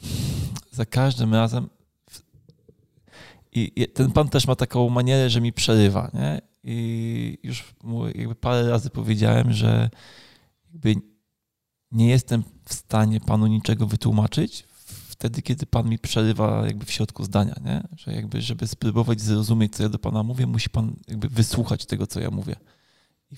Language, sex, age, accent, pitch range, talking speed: Polish, male, 20-39, native, 105-120 Hz, 150 wpm